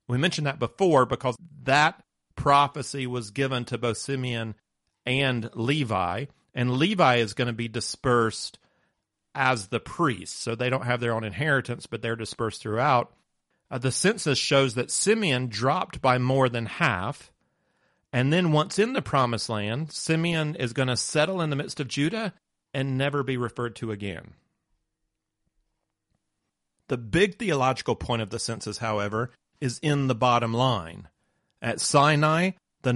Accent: American